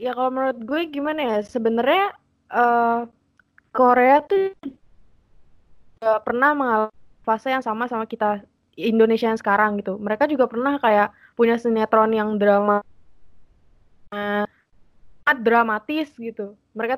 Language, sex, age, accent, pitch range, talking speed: Indonesian, female, 20-39, native, 215-270 Hz, 115 wpm